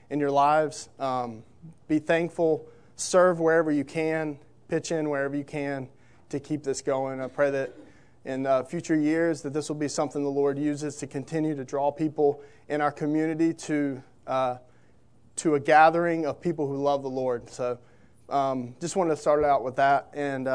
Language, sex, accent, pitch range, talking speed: English, male, American, 130-155 Hz, 185 wpm